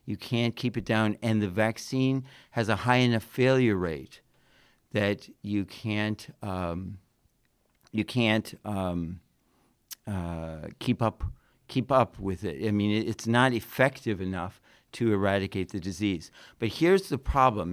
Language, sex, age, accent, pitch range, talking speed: English, male, 50-69, American, 100-125 Hz, 140 wpm